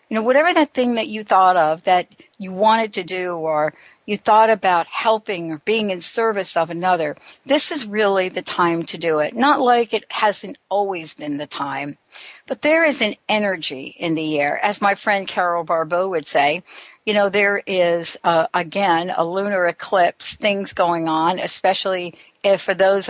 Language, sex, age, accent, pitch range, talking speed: English, female, 60-79, American, 175-220 Hz, 185 wpm